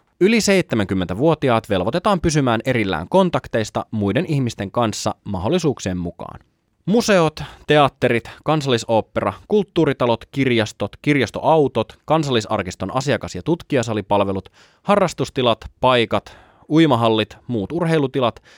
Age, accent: 20-39, native